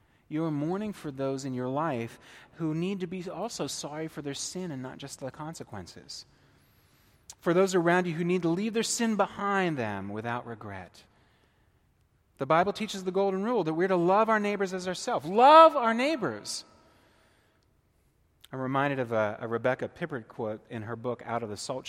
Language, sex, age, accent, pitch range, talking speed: English, male, 30-49, American, 110-175 Hz, 185 wpm